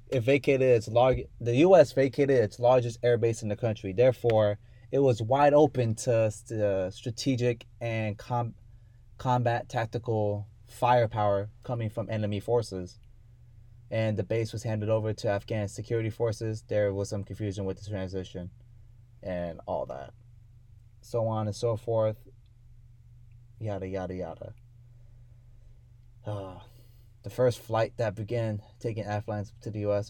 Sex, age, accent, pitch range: male, 20-39, American, 105-120 Hz